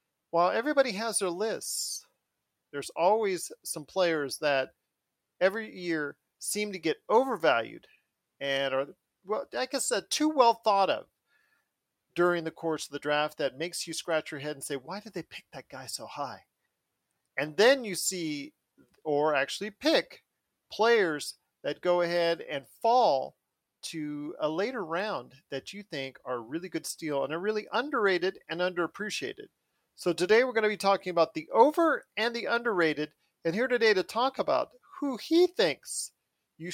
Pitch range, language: 160-215 Hz, English